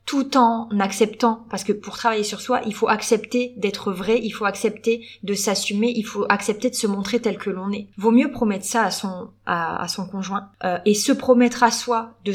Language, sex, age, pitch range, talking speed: French, female, 20-39, 210-245 Hz, 225 wpm